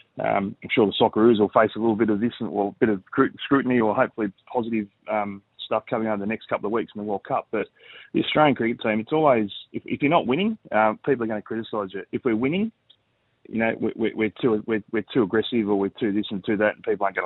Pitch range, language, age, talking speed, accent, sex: 105-125 Hz, English, 30-49, 265 wpm, Australian, male